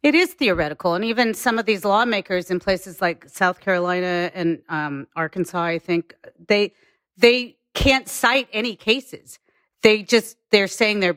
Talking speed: 160 wpm